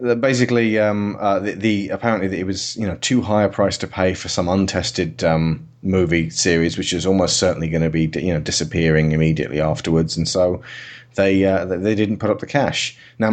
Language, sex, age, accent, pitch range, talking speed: English, male, 30-49, British, 80-110 Hz, 205 wpm